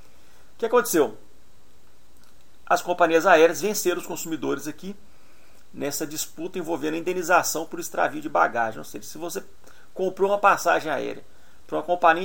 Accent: Brazilian